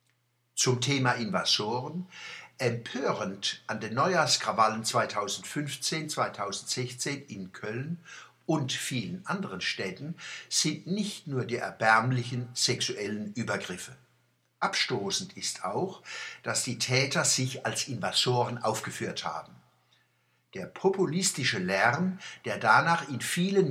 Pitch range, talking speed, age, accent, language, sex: 120-160 Hz, 100 wpm, 60-79, German, German, male